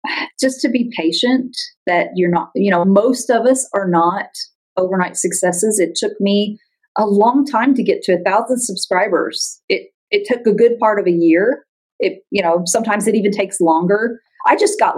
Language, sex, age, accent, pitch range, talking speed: English, female, 40-59, American, 195-260 Hz, 190 wpm